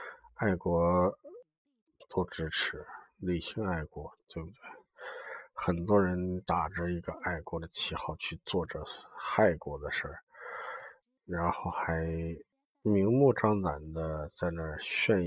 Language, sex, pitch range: Chinese, male, 85-115 Hz